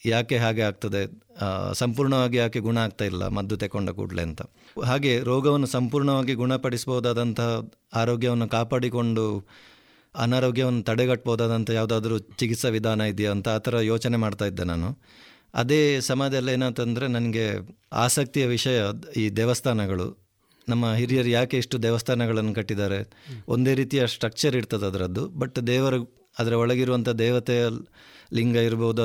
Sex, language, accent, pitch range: male, Kannada, native, 110-125 Hz